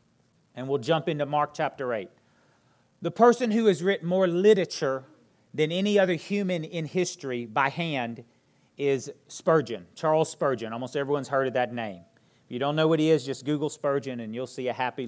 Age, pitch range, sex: 40-59, 135-175 Hz, male